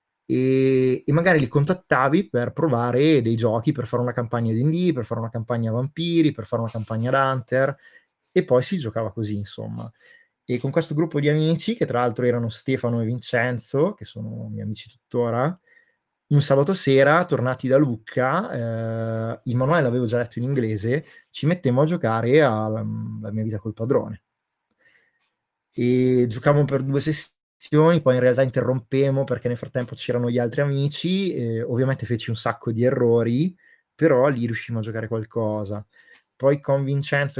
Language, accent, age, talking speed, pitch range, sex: Italian, native, 20-39, 165 wpm, 115-140 Hz, male